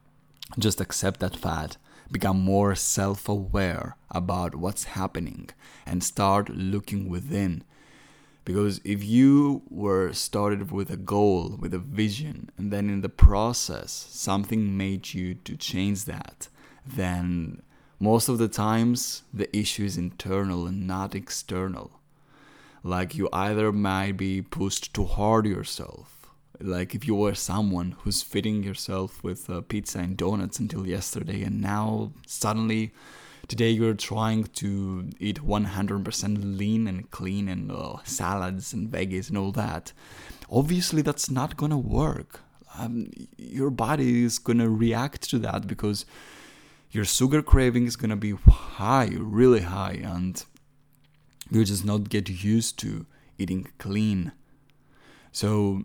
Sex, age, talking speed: male, 20-39, 135 wpm